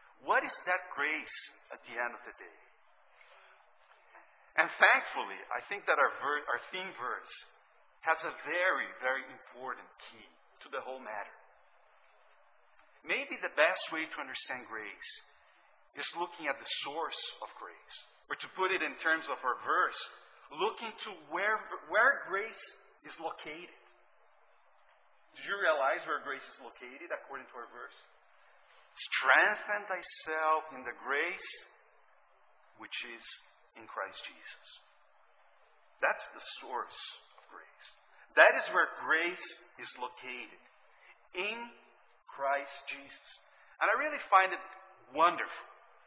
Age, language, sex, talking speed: 50-69, English, male, 130 wpm